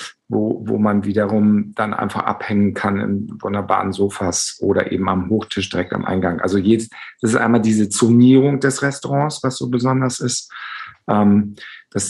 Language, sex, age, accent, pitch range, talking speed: German, male, 50-69, German, 95-115 Hz, 165 wpm